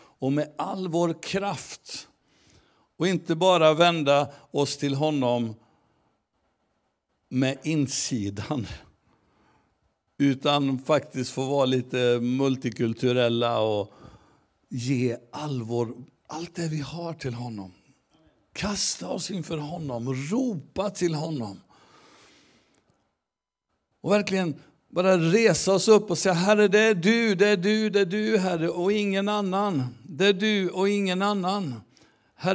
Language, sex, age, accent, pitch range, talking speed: Swedish, male, 60-79, native, 130-195 Hz, 120 wpm